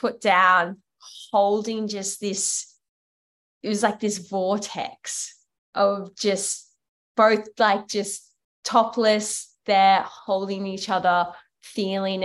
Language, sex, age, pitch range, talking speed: English, female, 10-29, 175-215 Hz, 105 wpm